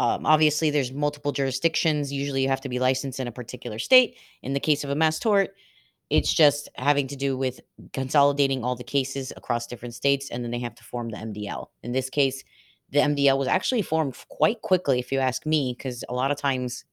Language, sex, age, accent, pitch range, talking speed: English, female, 30-49, American, 125-150 Hz, 220 wpm